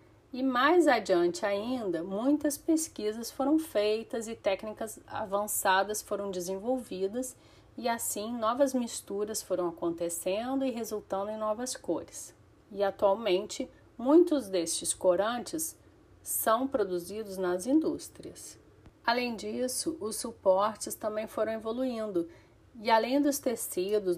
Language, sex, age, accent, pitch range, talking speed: Portuguese, female, 40-59, Brazilian, 185-230 Hz, 110 wpm